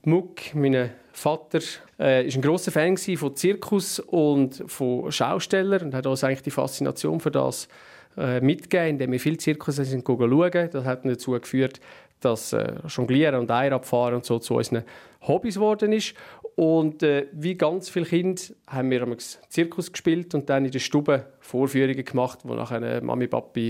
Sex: male